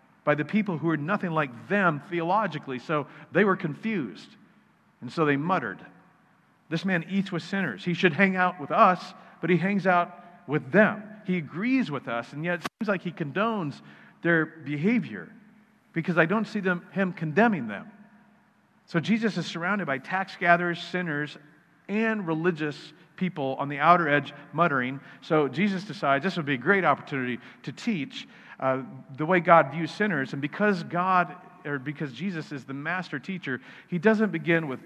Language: English